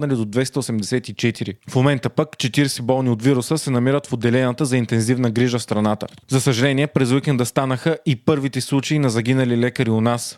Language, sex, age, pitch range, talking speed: Bulgarian, male, 30-49, 125-140 Hz, 180 wpm